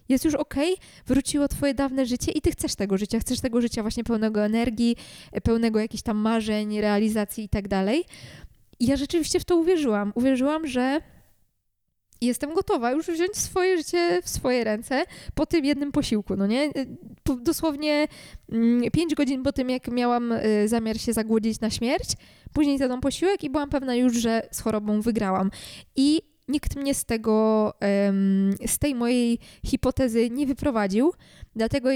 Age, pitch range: 20-39, 220-290 Hz